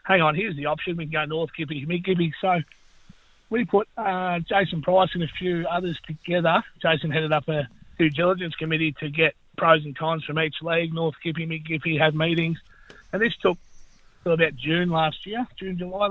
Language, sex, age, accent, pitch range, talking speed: English, male, 30-49, Australian, 150-175 Hz, 195 wpm